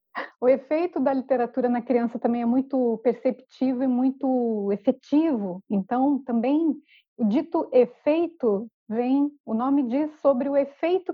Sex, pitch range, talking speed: female, 245-305 Hz, 135 wpm